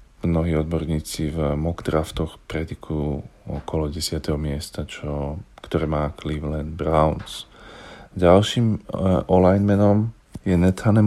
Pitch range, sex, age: 80-95 Hz, male, 40-59